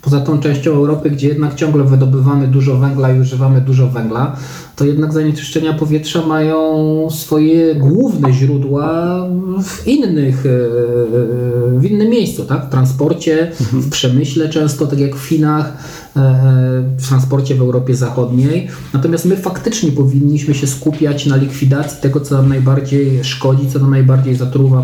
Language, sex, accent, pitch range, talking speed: Polish, male, native, 120-145 Hz, 145 wpm